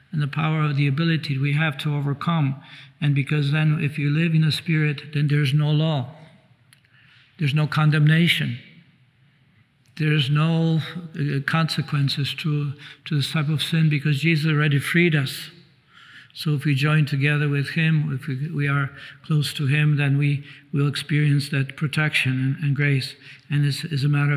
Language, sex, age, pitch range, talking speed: English, male, 60-79, 140-155 Hz, 165 wpm